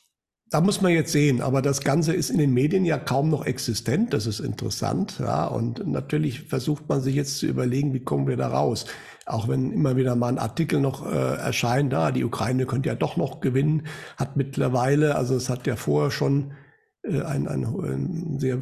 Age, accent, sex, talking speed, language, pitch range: 60-79, German, male, 205 wpm, German, 125-145 Hz